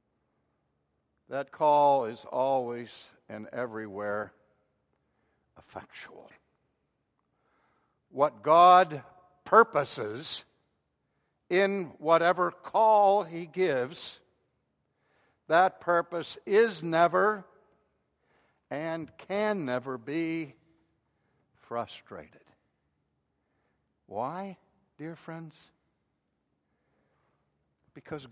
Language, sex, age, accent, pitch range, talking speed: English, male, 60-79, American, 120-185 Hz, 60 wpm